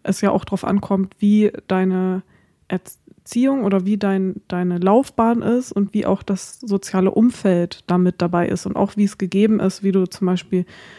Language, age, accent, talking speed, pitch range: German, 20-39, German, 180 wpm, 185-205 Hz